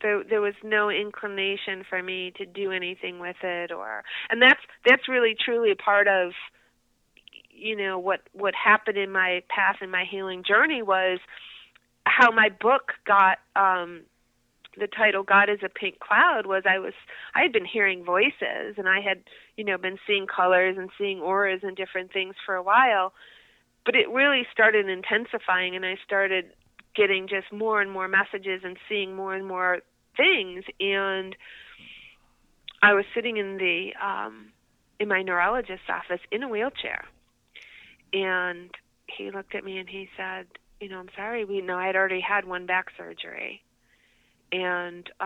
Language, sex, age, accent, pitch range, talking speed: English, female, 40-59, American, 185-205 Hz, 165 wpm